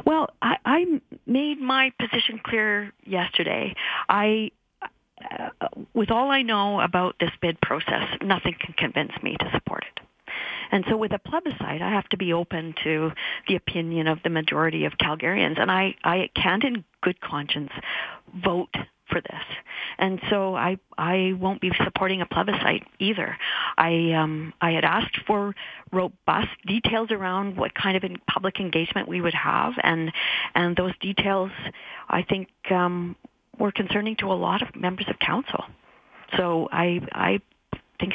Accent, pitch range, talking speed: American, 170-210 Hz, 160 wpm